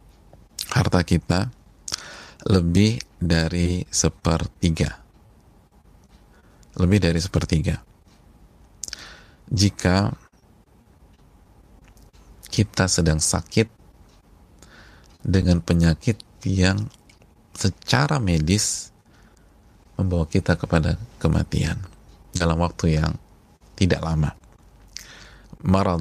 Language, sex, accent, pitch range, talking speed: Indonesian, male, native, 80-100 Hz, 60 wpm